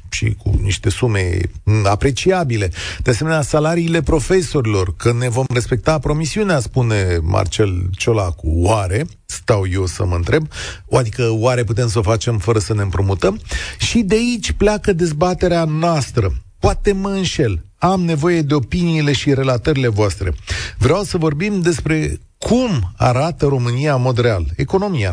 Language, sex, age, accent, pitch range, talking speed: Romanian, male, 40-59, native, 100-155 Hz, 145 wpm